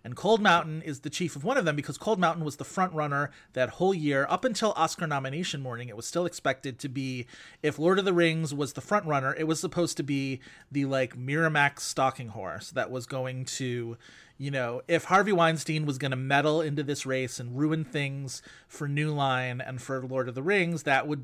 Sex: male